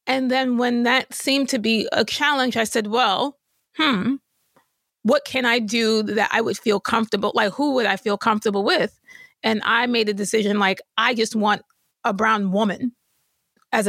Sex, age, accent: female, 30-49, American